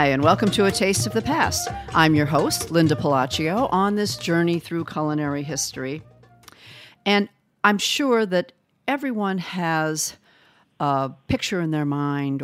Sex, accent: female, American